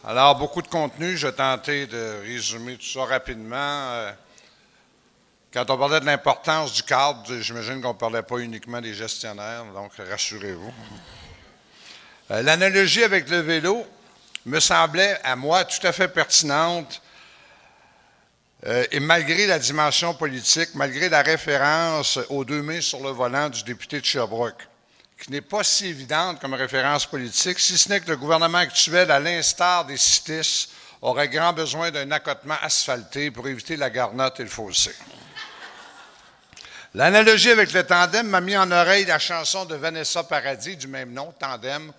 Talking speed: 155 wpm